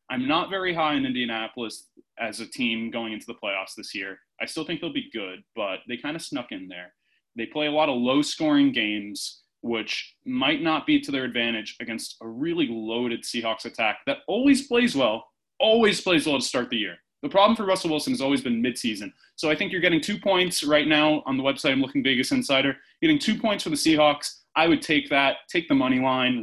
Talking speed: 225 wpm